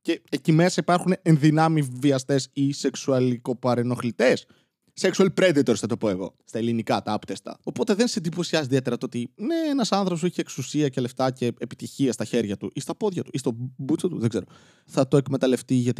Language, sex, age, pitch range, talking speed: Greek, male, 20-39, 130-185 Hz, 190 wpm